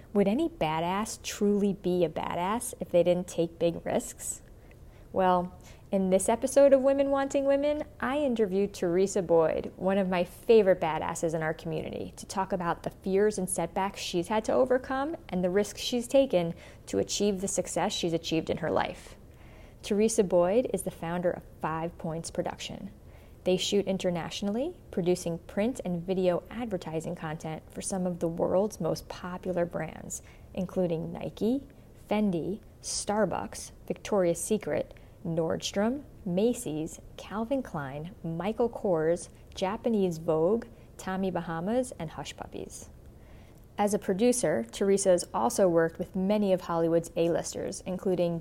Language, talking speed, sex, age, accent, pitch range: English, 145 wpm, female, 30-49, American, 170-205 Hz